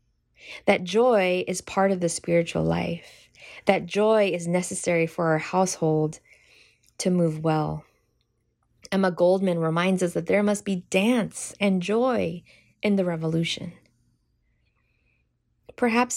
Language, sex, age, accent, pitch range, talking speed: English, female, 20-39, American, 165-205 Hz, 125 wpm